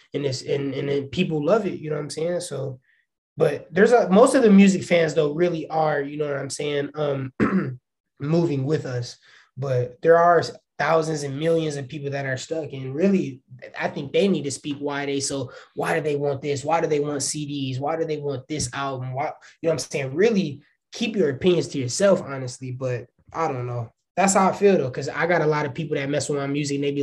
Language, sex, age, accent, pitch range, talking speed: English, male, 20-39, American, 140-170 Hz, 240 wpm